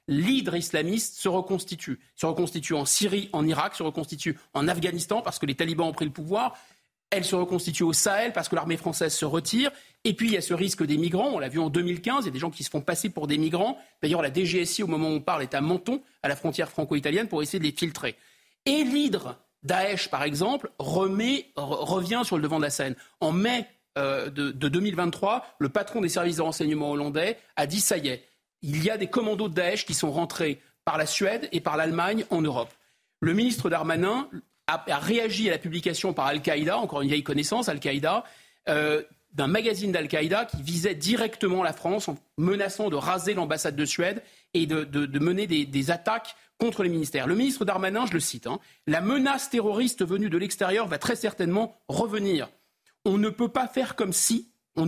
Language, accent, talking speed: French, French, 210 wpm